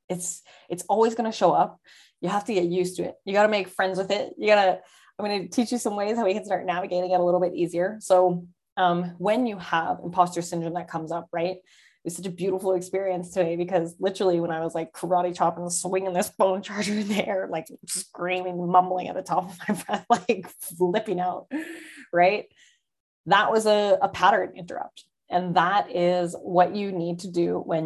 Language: English